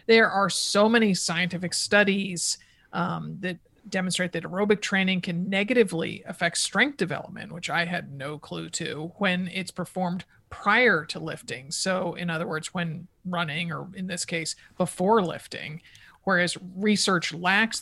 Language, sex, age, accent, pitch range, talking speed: English, male, 40-59, American, 165-195 Hz, 150 wpm